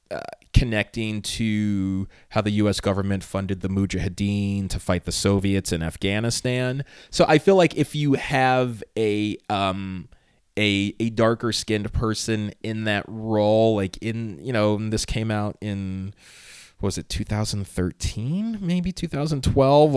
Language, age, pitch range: English, 30-49, 100-130 Hz